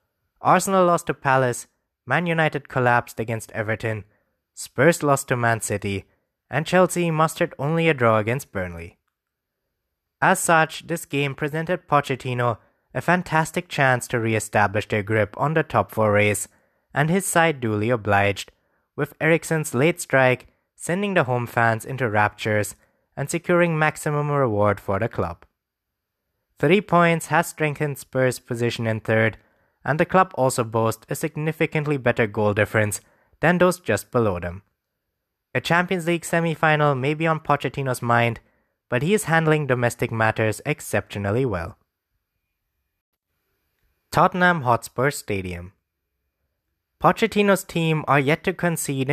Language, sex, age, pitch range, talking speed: English, male, 20-39, 105-160 Hz, 135 wpm